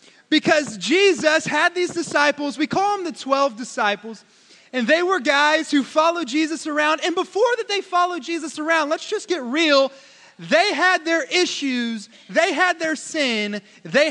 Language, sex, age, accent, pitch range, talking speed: English, male, 30-49, American, 230-310 Hz, 165 wpm